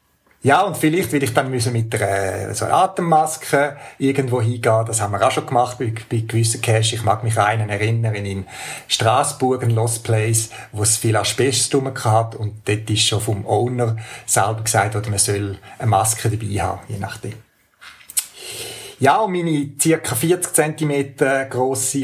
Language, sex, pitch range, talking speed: German, male, 110-135 Hz, 165 wpm